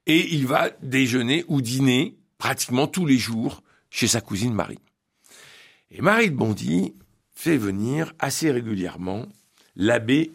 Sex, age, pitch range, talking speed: male, 60-79, 120-165 Hz, 135 wpm